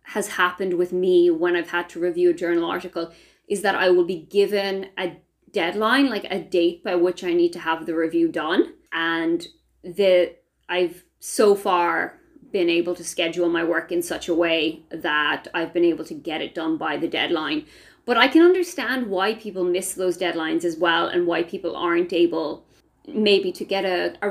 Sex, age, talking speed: female, 30-49, 195 wpm